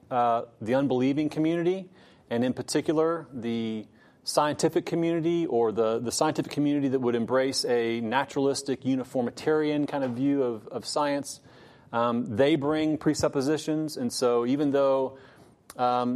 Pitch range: 120-145 Hz